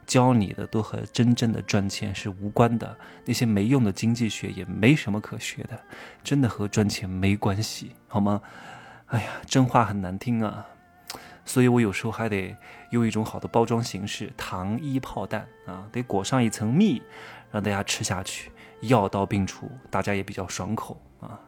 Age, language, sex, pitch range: 20-39, Chinese, male, 100-125 Hz